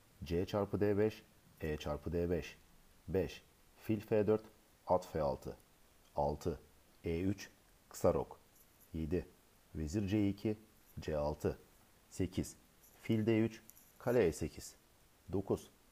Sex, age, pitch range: male, 50-69, 80-105 Hz